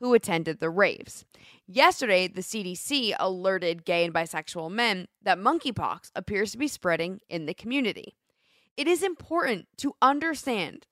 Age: 20-39